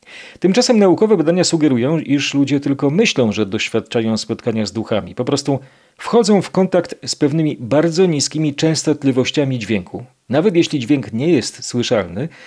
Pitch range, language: 110-160 Hz, Polish